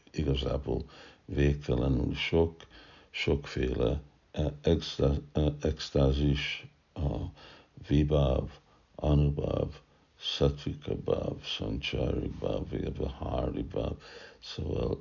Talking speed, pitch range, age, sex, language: 65 wpm, 70-75 Hz, 60-79, male, Hungarian